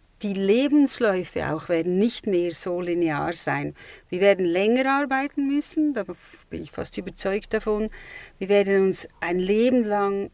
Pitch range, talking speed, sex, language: 185-230 Hz, 150 wpm, female, German